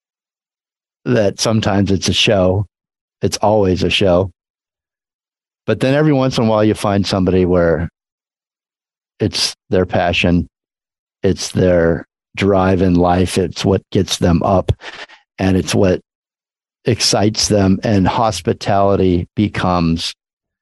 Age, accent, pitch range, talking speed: 50-69, American, 90-110 Hz, 120 wpm